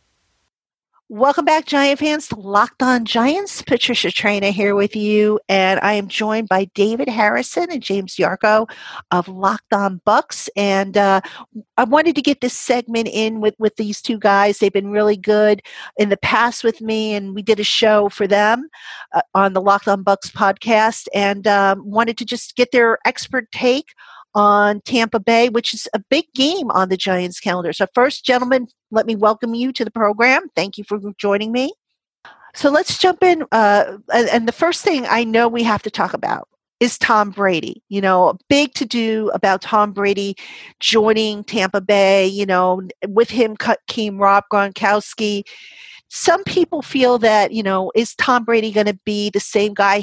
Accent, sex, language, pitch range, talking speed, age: American, female, English, 200-240 Hz, 185 wpm, 50-69